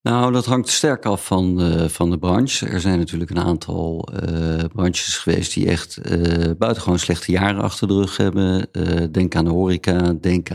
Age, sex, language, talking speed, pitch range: 50-69, male, Dutch, 195 wpm, 85-105 Hz